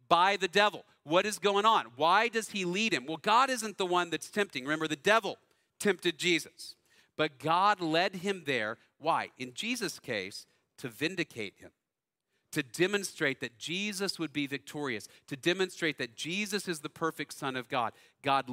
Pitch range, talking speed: 155-195 Hz, 175 wpm